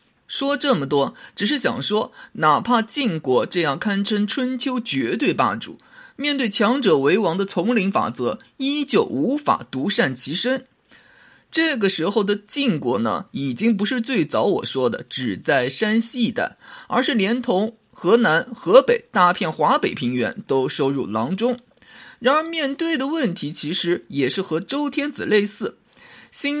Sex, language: male, Chinese